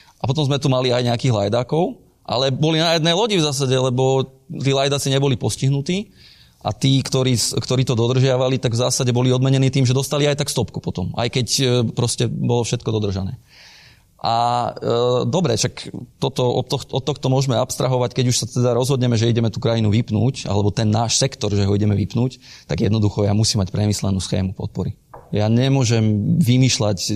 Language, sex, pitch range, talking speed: Slovak, male, 105-130 Hz, 180 wpm